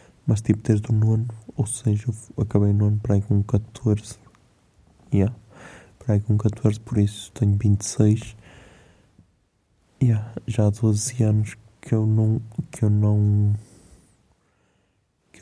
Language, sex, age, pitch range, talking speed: Portuguese, male, 20-39, 105-120 Hz, 150 wpm